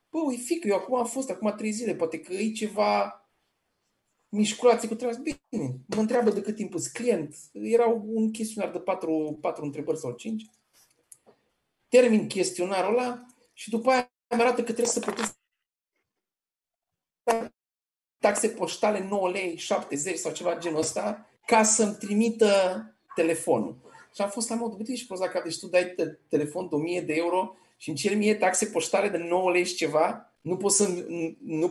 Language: Romanian